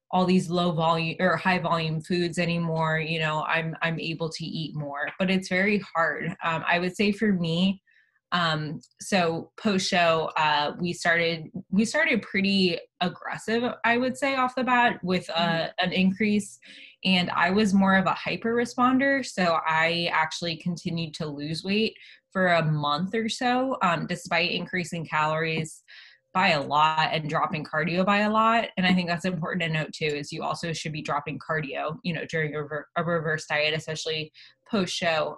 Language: English